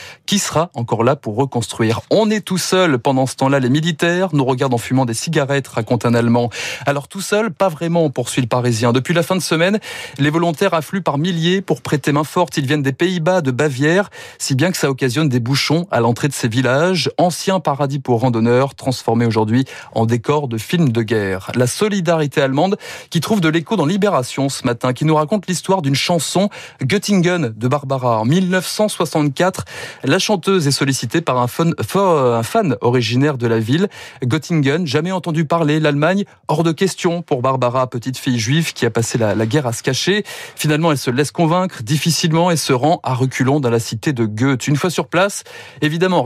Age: 30-49